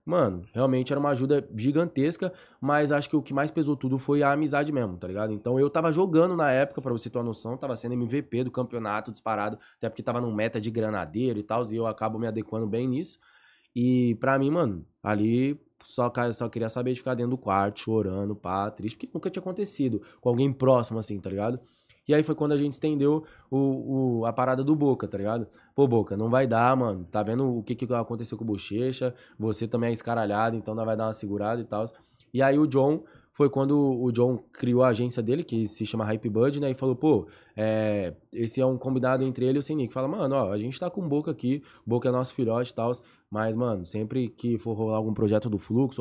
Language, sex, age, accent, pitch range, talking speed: Portuguese, male, 20-39, Brazilian, 110-135 Hz, 230 wpm